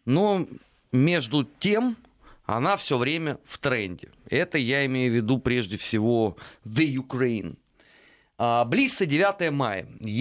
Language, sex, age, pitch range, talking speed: Russian, male, 30-49, 120-165 Hz, 120 wpm